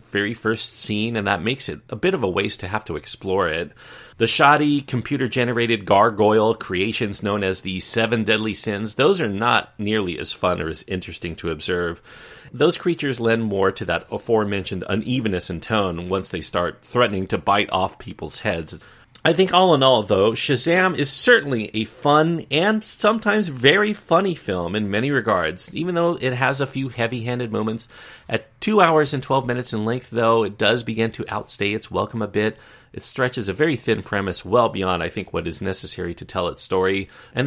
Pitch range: 100-130 Hz